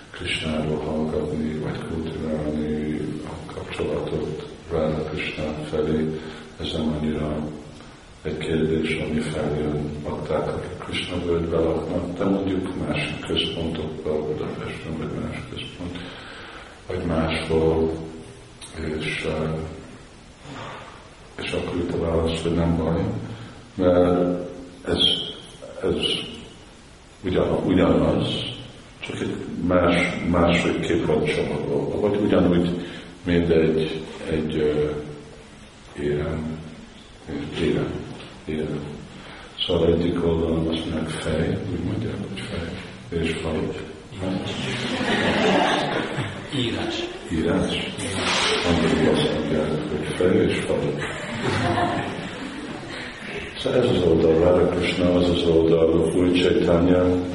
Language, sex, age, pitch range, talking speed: Hungarian, male, 50-69, 75-90 Hz, 75 wpm